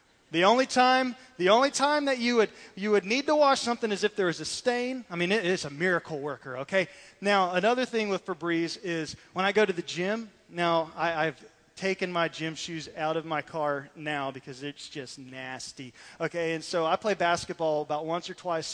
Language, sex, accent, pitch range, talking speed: English, male, American, 150-185 Hz, 215 wpm